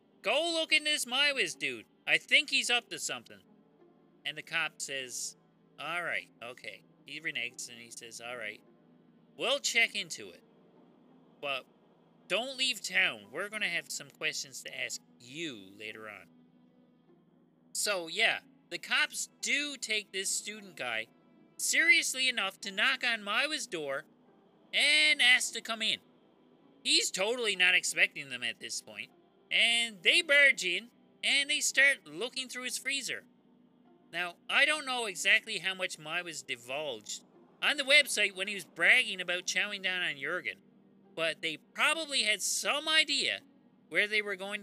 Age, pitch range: 30-49, 195-275 Hz